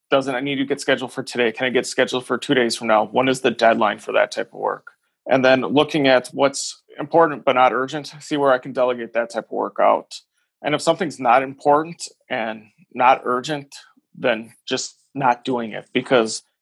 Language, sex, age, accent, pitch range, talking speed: English, male, 30-49, American, 120-140 Hz, 215 wpm